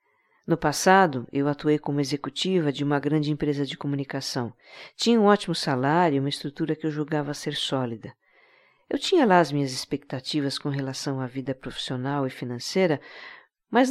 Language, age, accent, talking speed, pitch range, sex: Portuguese, 50-69, Brazilian, 165 wpm, 140-180 Hz, female